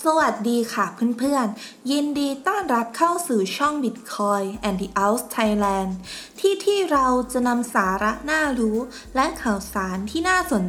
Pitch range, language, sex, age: 205-275 Hz, Thai, female, 20-39